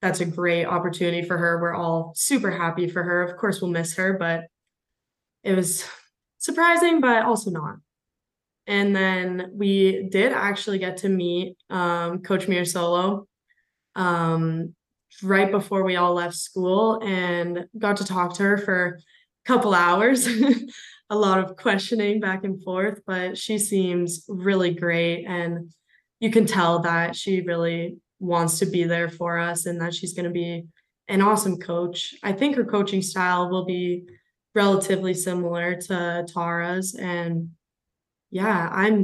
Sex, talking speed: female, 155 wpm